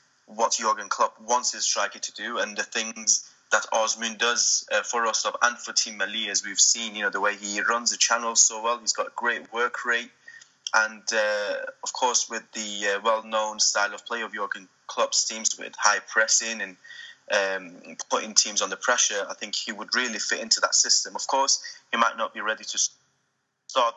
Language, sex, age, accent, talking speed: English, male, 20-39, British, 205 wpm